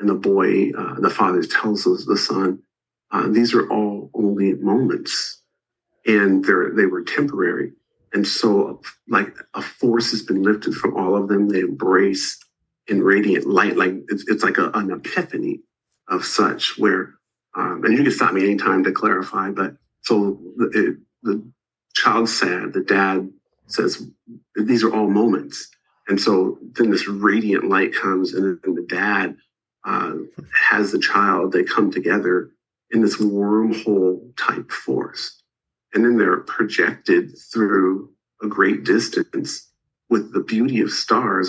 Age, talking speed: 50-69, 155 wpm